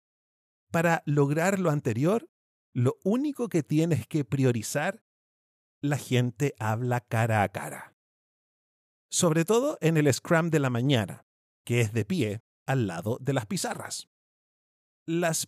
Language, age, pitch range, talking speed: Spanish, 40-59, 120-170 Hz, 130 wpm